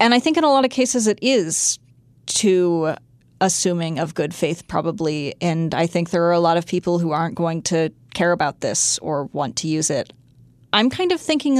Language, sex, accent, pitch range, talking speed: English, female, American, 160-185 Hz, 210 wpm